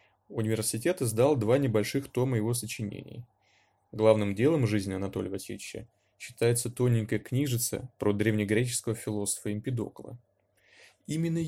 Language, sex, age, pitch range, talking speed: Russian, male, 20-39, 105-125 Hz, 105 wpm